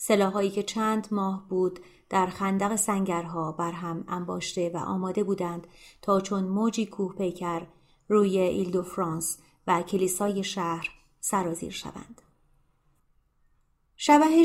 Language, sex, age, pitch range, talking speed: Persian, female, 30-49, 175-210 Hz, 115 wpm